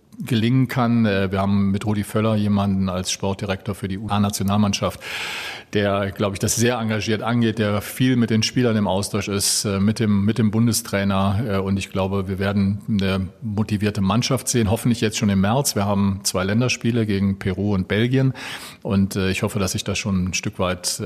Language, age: German, 40-59